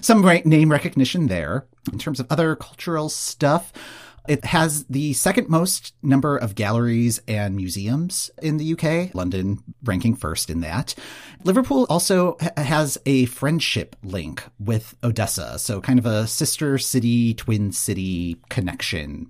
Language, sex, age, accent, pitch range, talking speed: English, male, 40-59, American, 100-150 Hz, 145 wpm